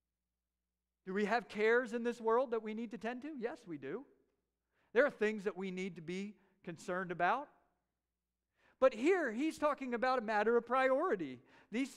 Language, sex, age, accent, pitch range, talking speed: English, male, 50-69, American, 190-245 Hz, 180 wpm